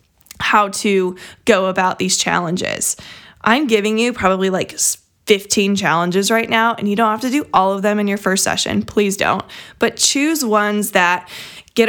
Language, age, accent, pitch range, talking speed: English, 20-39, American, 190-235 Hz, 175 wpm